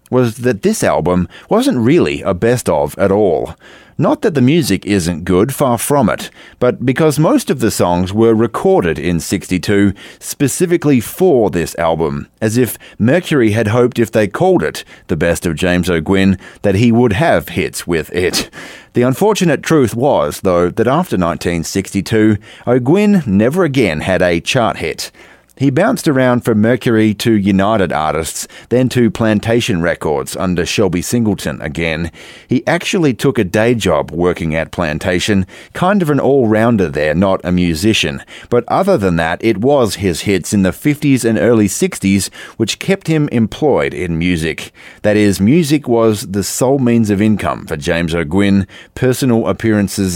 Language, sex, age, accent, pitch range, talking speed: English, male, 30-49, Australian, 90-125 Hz, 165 wpm